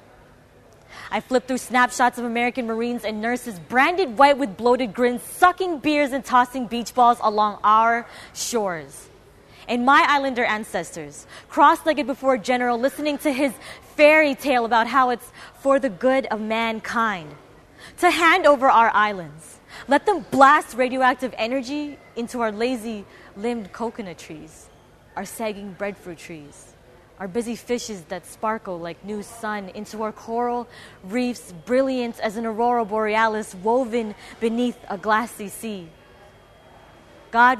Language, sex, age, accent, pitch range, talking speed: English, female, 20-39, American, 215-270 Hz, 135 wpm